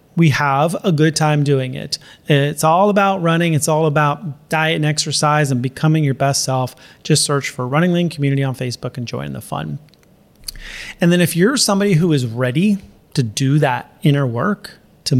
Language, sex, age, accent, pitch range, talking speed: English, male, 30-49, American, 140-180 Hz, 190 wpm